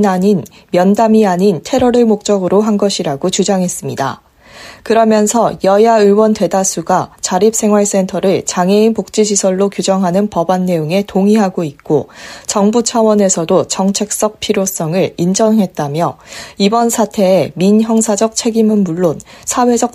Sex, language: female, Korean